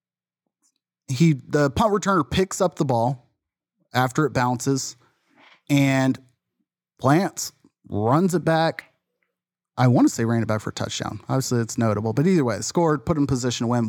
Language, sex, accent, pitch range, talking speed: English, male, American, 115-140 Hz, 165 wpm